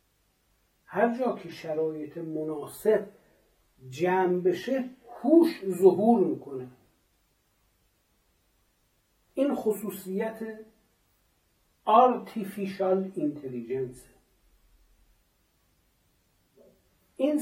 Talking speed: 50 wpm